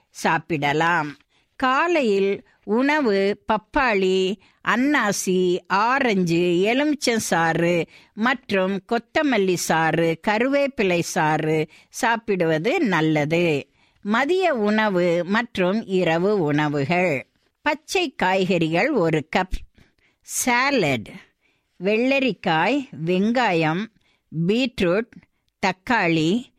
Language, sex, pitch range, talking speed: Tamil, female, 170-245 Hz, 65 wpm